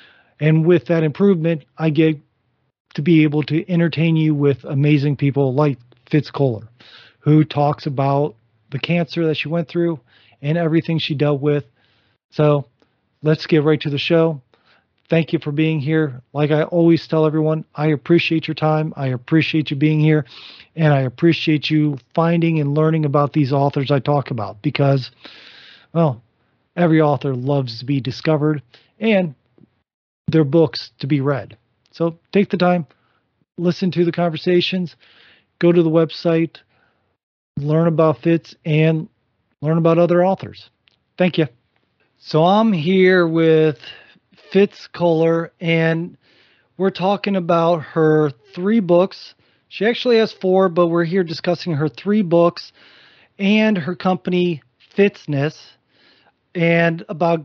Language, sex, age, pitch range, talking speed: English, male, 40-59, 140-170 Hz, 145 wpm